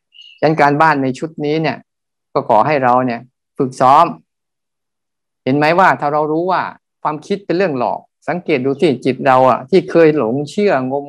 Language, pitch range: Thai, 130-160 Hz